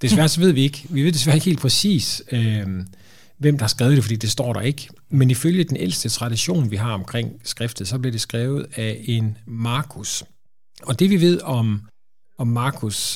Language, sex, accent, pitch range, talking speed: Danish, male, native, 110-140 Hz, 200 wpm